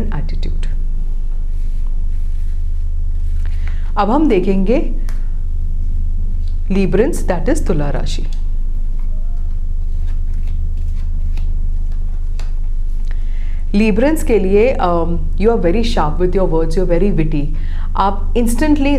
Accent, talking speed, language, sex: native, 75 wpm, Hindi, female